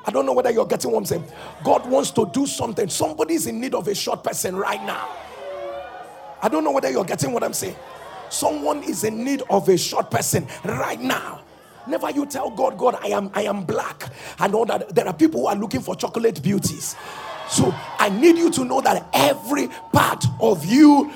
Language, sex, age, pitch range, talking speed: English, male, 40-59, 155-235 Hz, 215 wpm